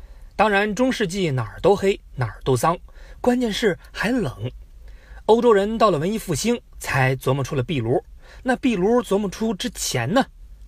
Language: Chinese